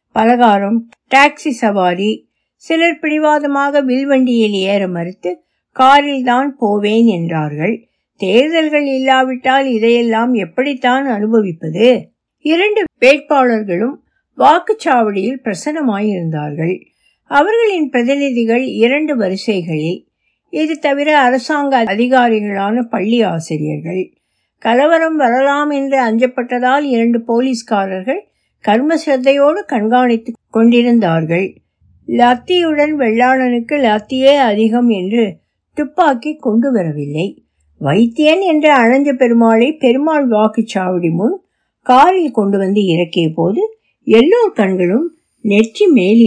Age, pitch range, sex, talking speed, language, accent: 60-79, 195-275 Hz, female, 75 wpm, Tamil, native